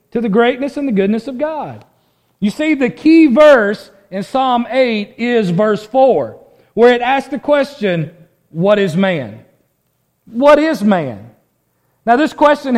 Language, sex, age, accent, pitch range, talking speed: English, male, 40-59, American, 180-260 Hz, 155 wpm